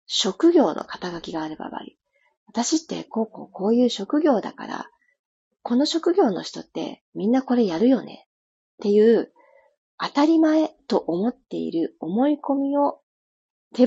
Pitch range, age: 185-290 Hz, 40-59